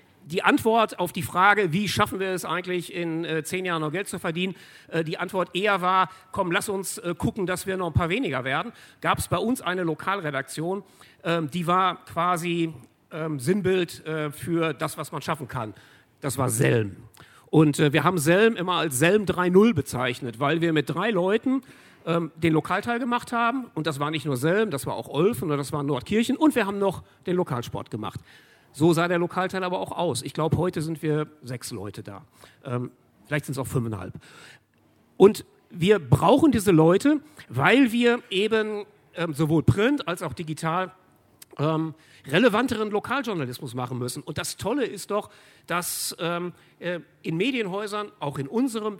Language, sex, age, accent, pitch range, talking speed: German, male, 50-69, German, 150-190 Hz, 170 wpm